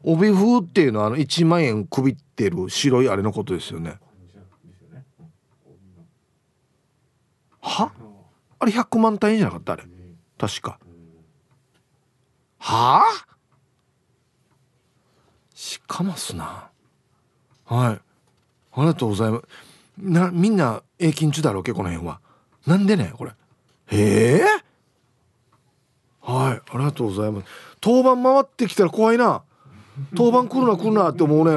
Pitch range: 120-185 Hz